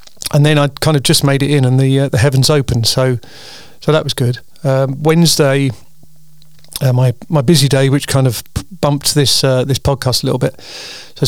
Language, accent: English, British